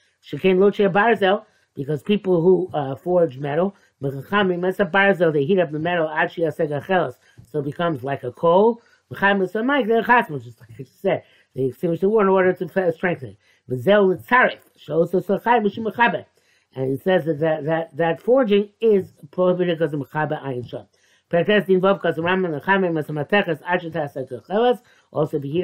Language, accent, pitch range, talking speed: English, American, 135-195 Hz, 125 wpm